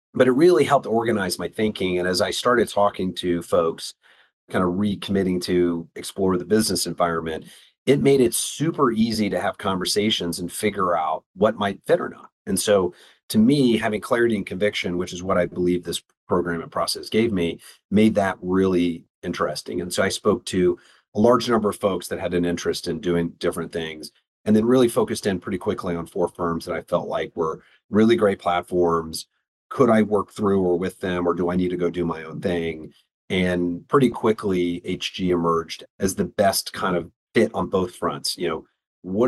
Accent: American